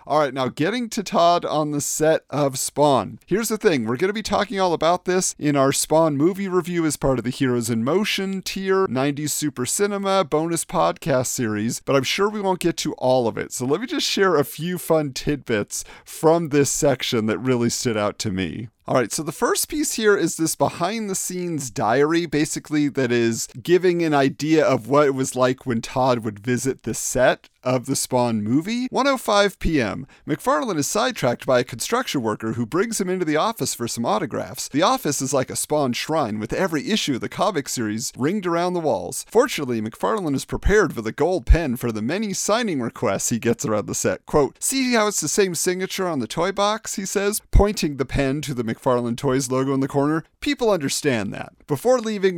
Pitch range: 125-185 Hz